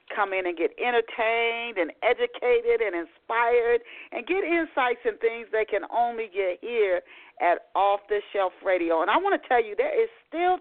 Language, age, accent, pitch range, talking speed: English, 40-59, American, 200-300 Hz, 185 wpm